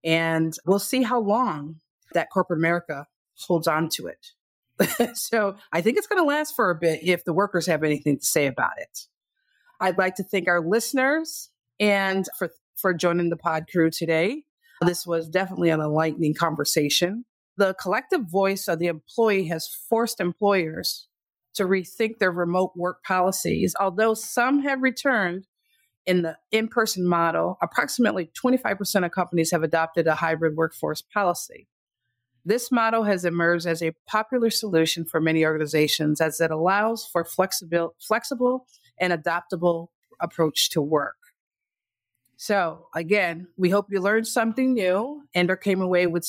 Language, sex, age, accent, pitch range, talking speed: English, female, 40-59, American, 165-220 Hz, 155 wpm